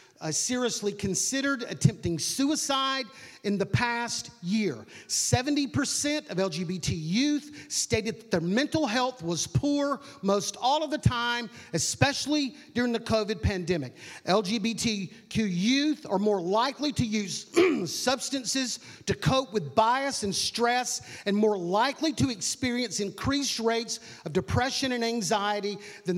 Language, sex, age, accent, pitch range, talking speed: English, male, 40-59, American, 180-255 Hz, 130 wpm